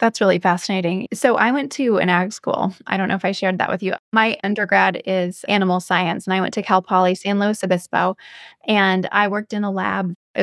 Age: 20-39